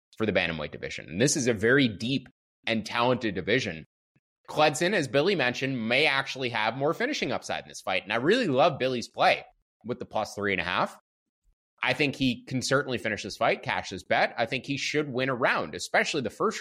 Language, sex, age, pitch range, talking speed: English, male, 20-39, 115-175 Hz, 215 wpm